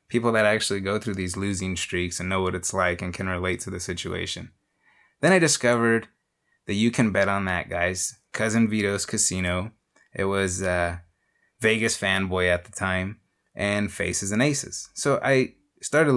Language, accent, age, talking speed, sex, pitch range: English, American, 20-39, 175 wpm, male, 95-115 Hz